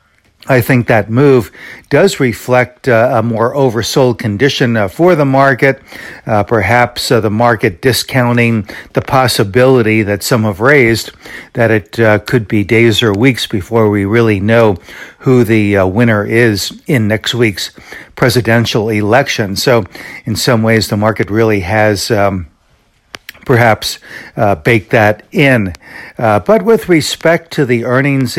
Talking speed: 150 wpm